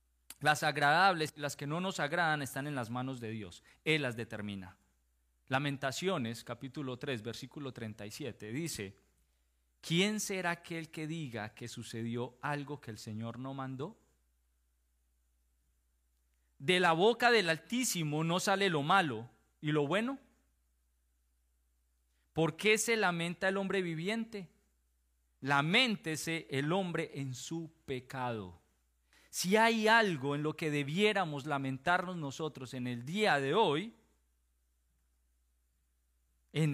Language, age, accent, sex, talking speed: Spanish, 40-59, Colombian, male, 125 wpm